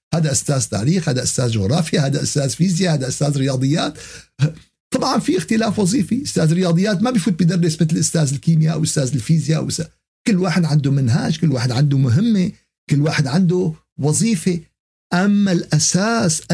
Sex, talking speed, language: male, 150 wpm, Arabic